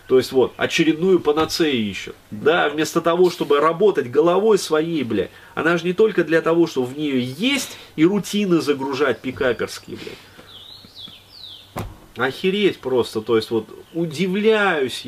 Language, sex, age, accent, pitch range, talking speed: Russian, male, 30-49, native, 110-170 Hz, 140 wpm